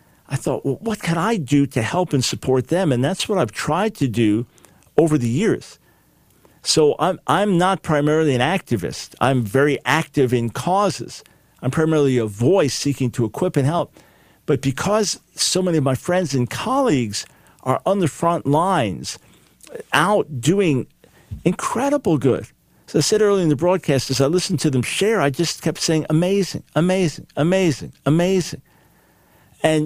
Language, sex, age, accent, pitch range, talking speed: English, male, 50-69, American, 135-175 Hz, 165 wpm